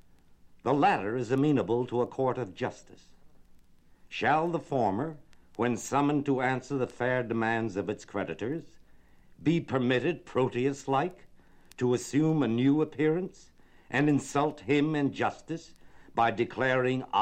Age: 60-79